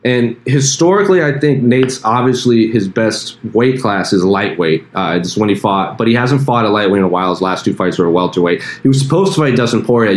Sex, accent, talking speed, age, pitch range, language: male, American, 250 wpm, 30-49, 95-130 Hz, English